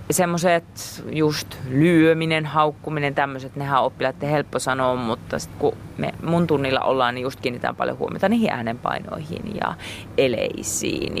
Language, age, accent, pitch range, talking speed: Finnish, 30-49, native, 125-160 Hz, 130 wpm